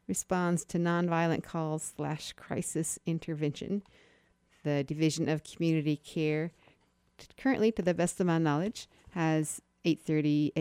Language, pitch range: English, 150-175 Hz